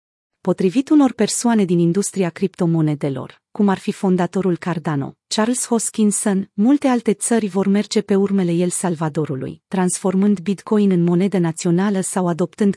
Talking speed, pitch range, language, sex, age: 135 wpm, 175-220 Hz, Romanian, female, 30-49